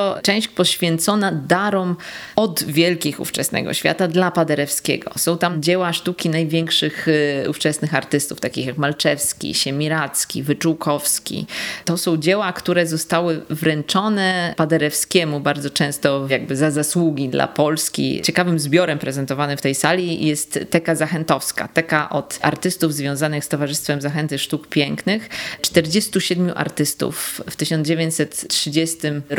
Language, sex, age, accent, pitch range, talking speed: Polish, female, 20-39, native, 150-175 Hz, 115 wpm